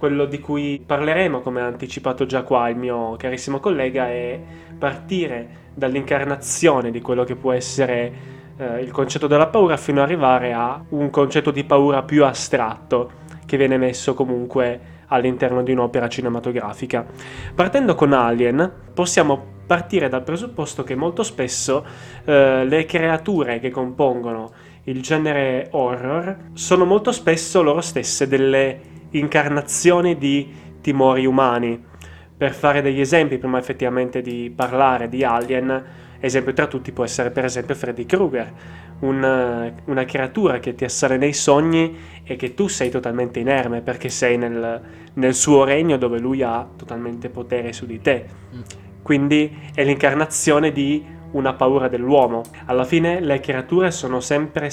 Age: 20-39